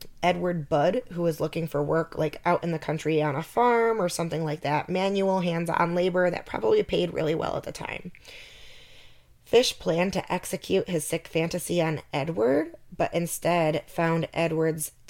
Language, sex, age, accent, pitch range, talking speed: English, female, 10-29, American, 155-185 Hz, 170 wpm